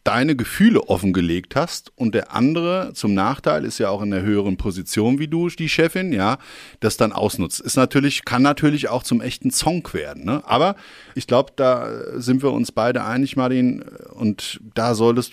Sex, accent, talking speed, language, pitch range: male, German, 185 wpm, German, 110-140 Hz